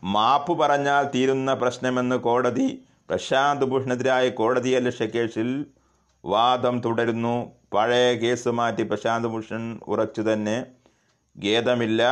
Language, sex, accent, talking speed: Malayalam, male, native, 95 wpm